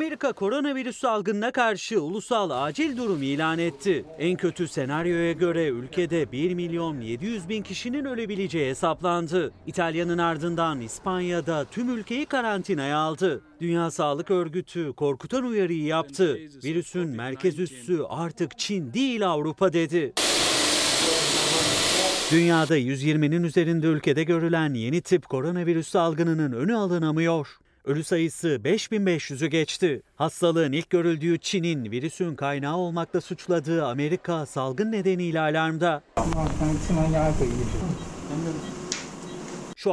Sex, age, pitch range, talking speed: male, 40-59, 155-180 Hz, 105 wpm